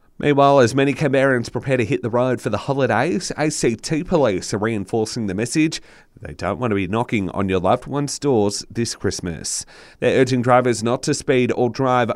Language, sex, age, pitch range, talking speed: English, male, 30-49, 105-135 Hz, 195 wpm